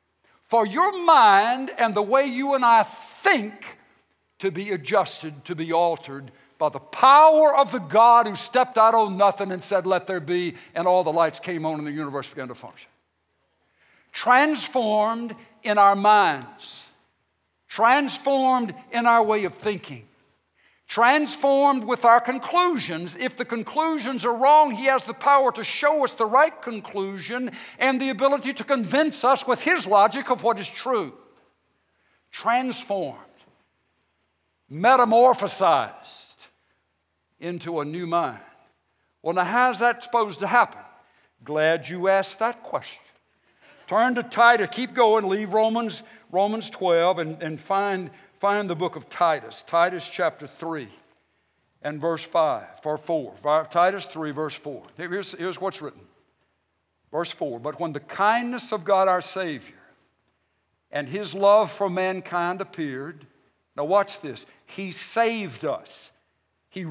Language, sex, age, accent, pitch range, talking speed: English, male, 60-79, American, 170-245 Hz, 145 wpm